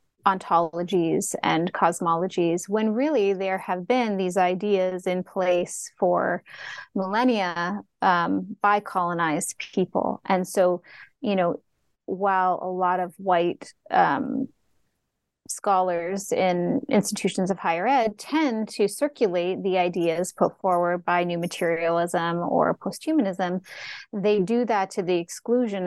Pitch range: 180-210 Hz